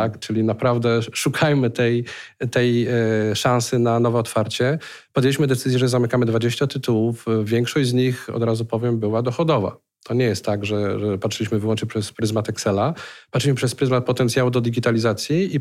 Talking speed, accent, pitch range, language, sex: 160 wpm, native, 115-130 Hz, Polish, male